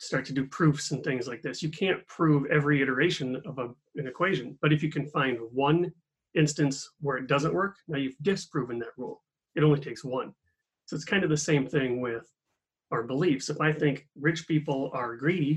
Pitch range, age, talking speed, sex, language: 130-160 Hz, 30-49, 205 wpm, male, English